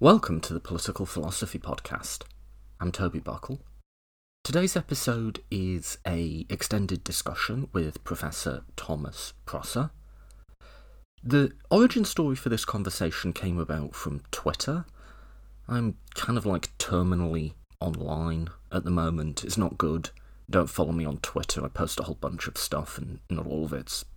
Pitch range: 80-105 Hz